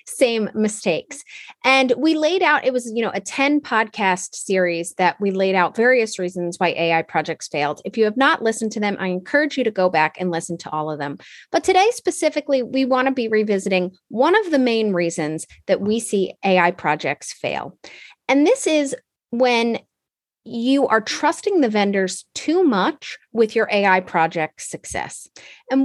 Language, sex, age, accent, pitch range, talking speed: English, female, 30-49, American, 195-280 Hz, 185 wpm